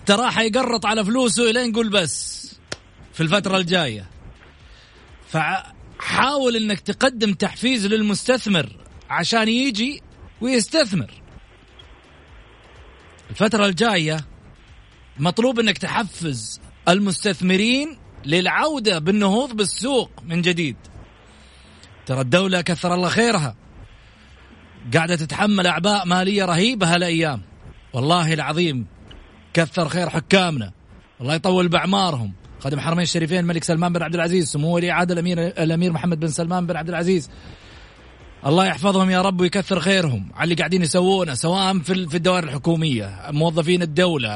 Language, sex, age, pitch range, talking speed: Arabic, male, 40-59, 150-195 Hz, 115 wpm